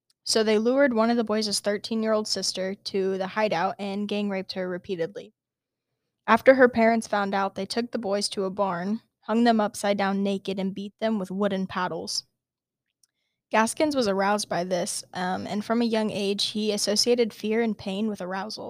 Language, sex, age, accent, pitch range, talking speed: English, female, 10-29, American, 195-220 Hz, 185 wpm